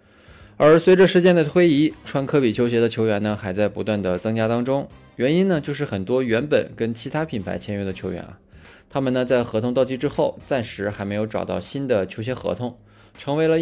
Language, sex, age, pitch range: Chinese, male, 20-39, 100-130 Hz